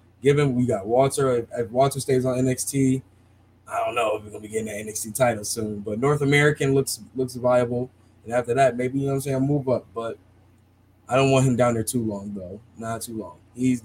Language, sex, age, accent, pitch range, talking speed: English, male, 20-39, American, 110-135 Hz, 230 wpm